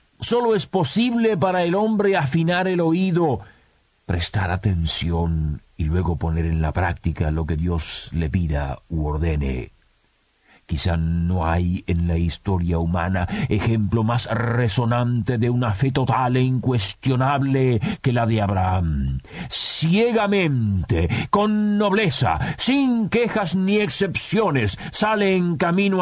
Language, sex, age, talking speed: Spanish, male, 50-69, 125 wpm